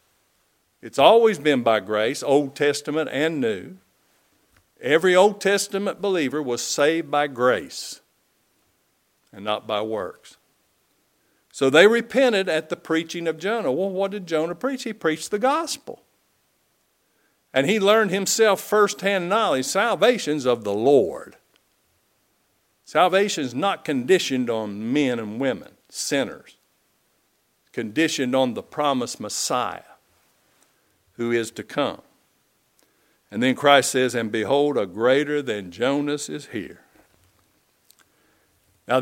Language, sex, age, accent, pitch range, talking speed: English, male, 50-69, American, 135-205 Hz, 120 wpm